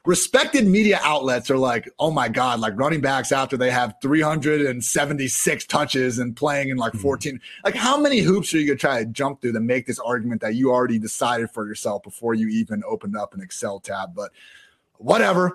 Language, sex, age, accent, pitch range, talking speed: English, male, 30-49, American, 120-170 Hz, 200 wpm